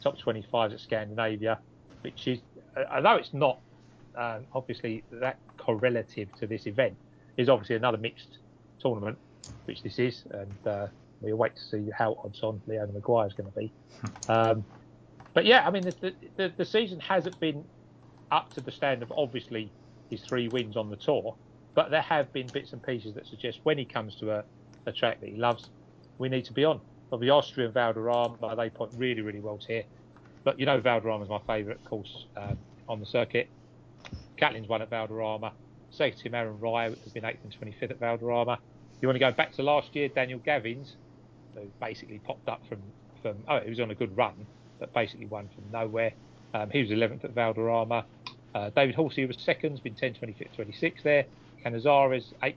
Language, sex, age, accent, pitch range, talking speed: English, male, 40-59, British, 110-130 Hz, 195 wpm